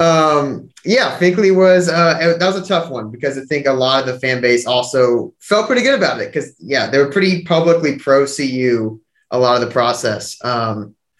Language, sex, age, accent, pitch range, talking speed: English, male, 20-39, American, 125-165 Hz, 210 wpm